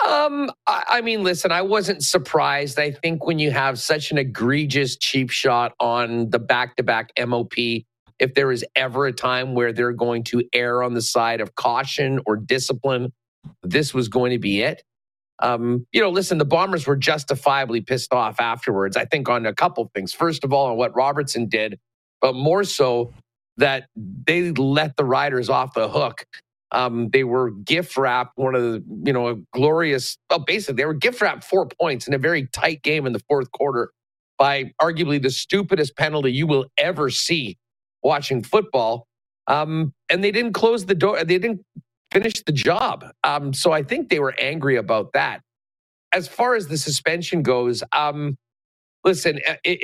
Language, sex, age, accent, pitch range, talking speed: English, male, 50-69, American, 120-160 Hz, 180 wpm